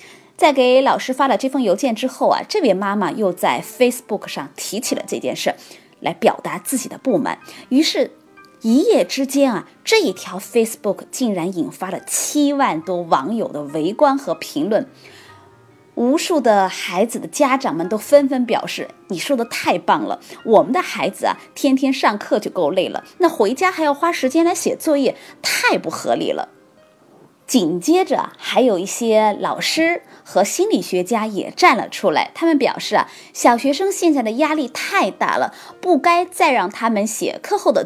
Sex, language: female, Chinese